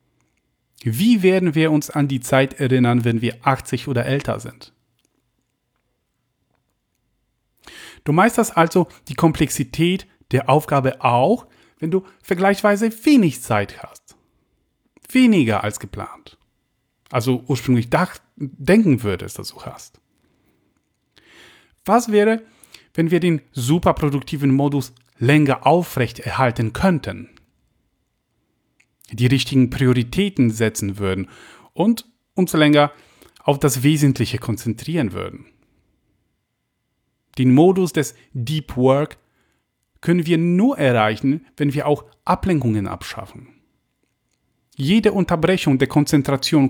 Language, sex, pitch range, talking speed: German, male, 120-170 Hz, 100 wpm